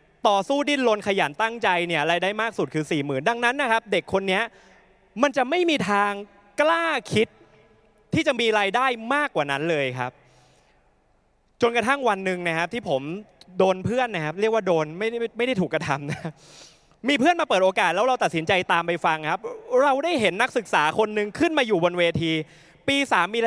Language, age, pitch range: Thai, 20-39, 170-235 Hz